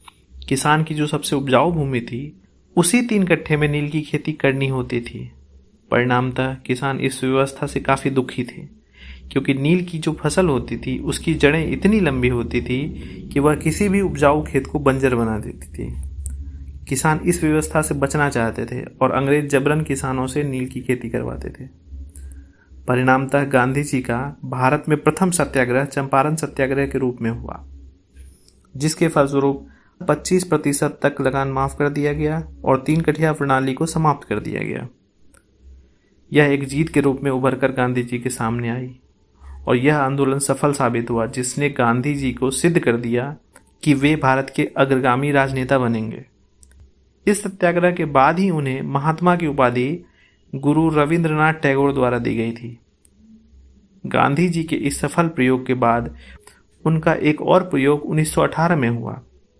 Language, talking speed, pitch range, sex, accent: Hindi, 165 wpm, 120-150 Hz, male, native